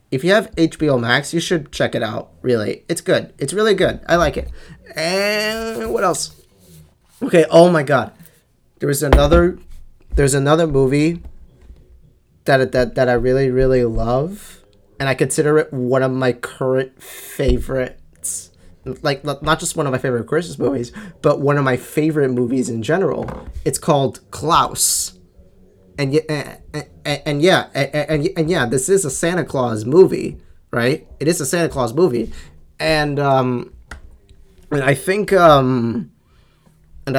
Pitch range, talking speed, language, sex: 125-160 Hz, 160 wpm, English, male